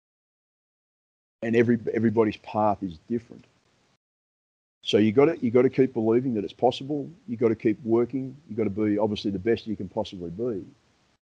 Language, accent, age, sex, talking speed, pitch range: English, Australian, 30-49, male, 185 wpm, 100-120 Hz